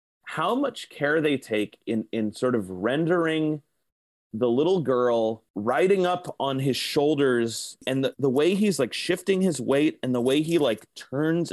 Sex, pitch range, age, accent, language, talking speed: male, 115-165 Hz, 30-49, American, English, 170 wpm